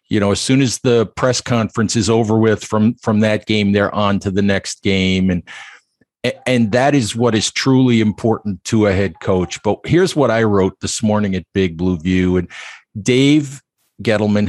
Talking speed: 195 wpm